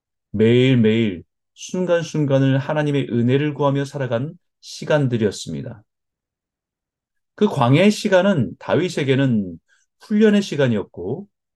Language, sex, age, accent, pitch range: Korean, male, 30-49, native, 115-160 Hz